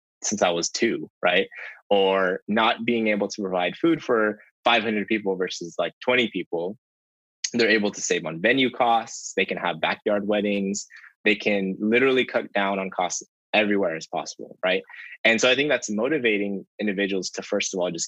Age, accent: 20-39, American